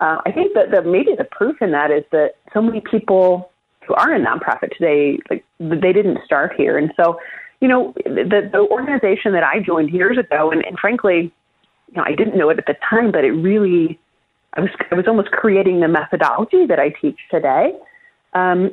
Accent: American